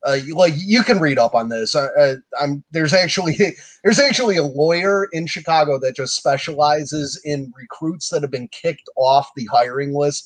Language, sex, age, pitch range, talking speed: English, male, 30-49, 140-190 Hz, 195 wpm